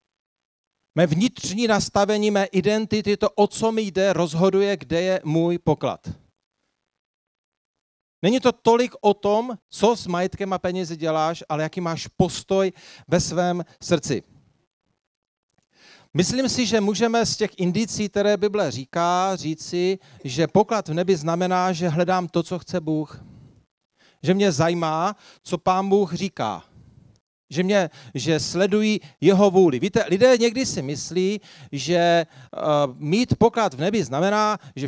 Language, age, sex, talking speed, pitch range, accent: Czech, 40-59, male, 140 wpm, 160-200 Hz, native